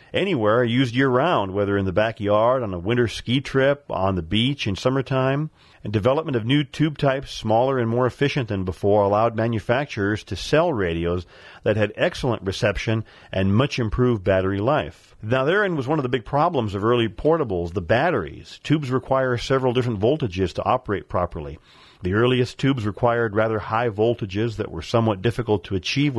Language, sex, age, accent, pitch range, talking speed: English, male, 40-59, American, 100-125 Hz, 175 wpm